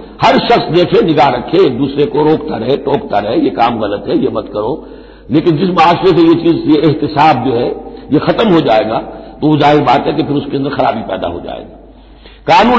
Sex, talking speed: male, 210 wpm